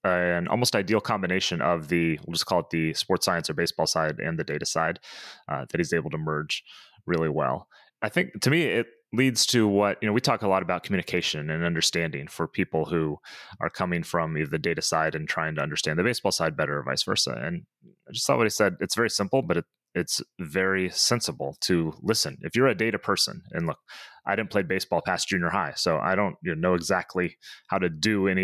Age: 30-49